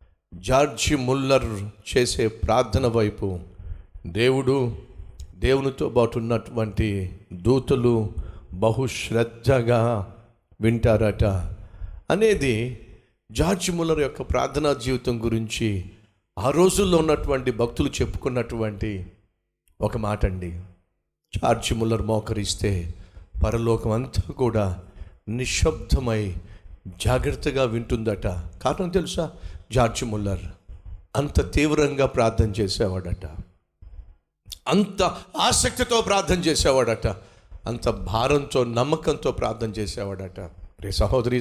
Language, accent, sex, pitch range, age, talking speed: Telugu, native, male, 95-130 Hz, 50-69, 80 wpm